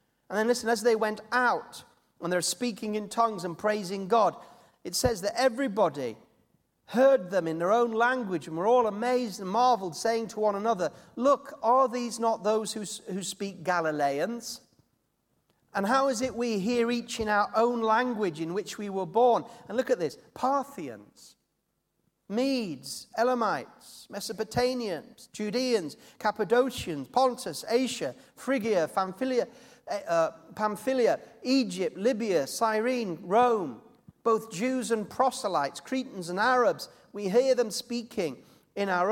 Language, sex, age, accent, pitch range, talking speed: English, male, 40-59, British, 205-250 Hz, 145 wpm